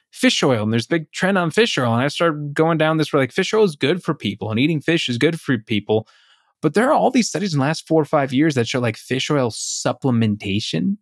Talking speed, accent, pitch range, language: 270 wpm, American, 115-155 Hz, English